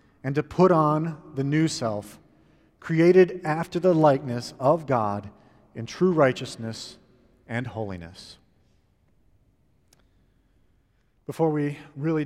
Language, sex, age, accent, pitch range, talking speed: English, male, 40-59, American, 130-160 Hz, 105 wpm